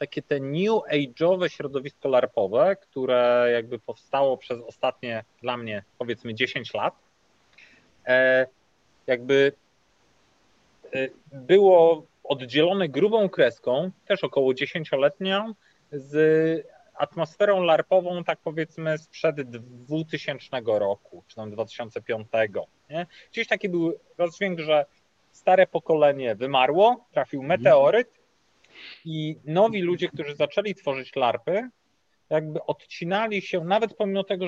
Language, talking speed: Polish, 100 wpm